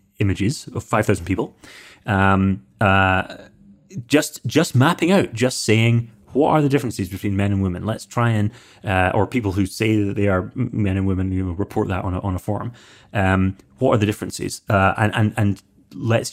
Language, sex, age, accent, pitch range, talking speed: English, male, 30-49, British, 95-115 Hz, 195 wpm